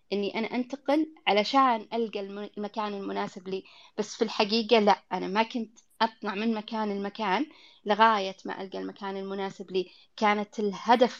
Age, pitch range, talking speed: 20-39, 200-230 Hz, 145 wpm